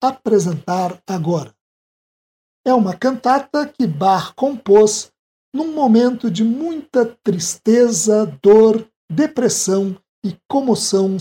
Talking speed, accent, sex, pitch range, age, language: 90 wpm, Brazilian, male, 195-260 Hz, 60-79, Portuguese